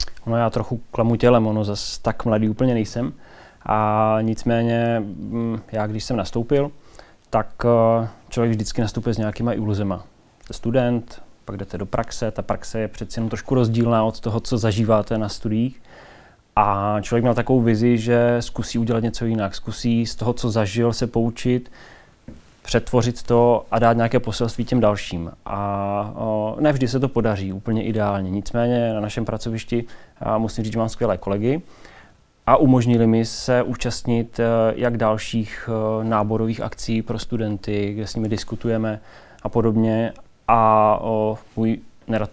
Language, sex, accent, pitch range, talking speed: Czech, male, native, 110-120 Hz, 150 wpm